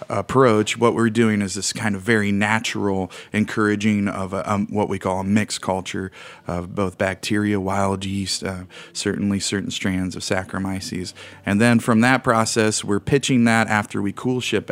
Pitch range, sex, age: 100-110 Hz, male, 30-49